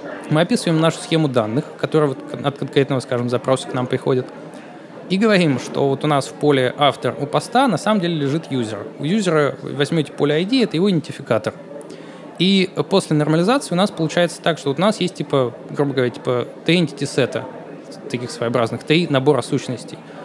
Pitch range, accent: 130-165 Hz, native